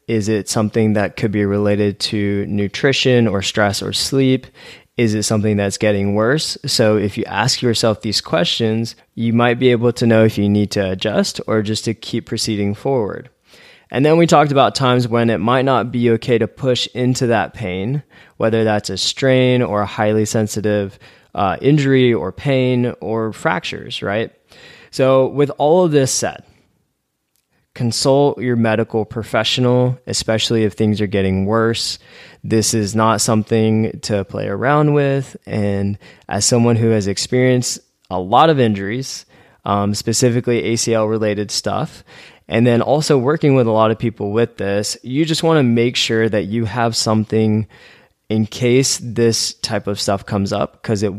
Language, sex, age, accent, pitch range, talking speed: English, male, 20-39, American, 105-125 Hz, 170 wpm